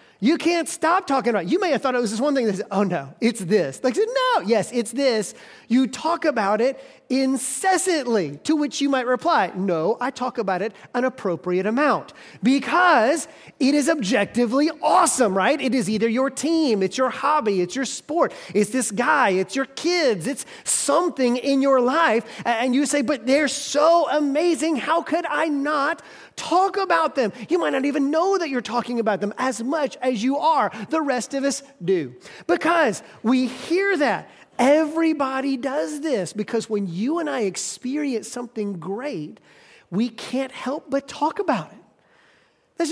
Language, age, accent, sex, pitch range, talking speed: English, 30-49, American, male, 225-305 Hz, 180 wpm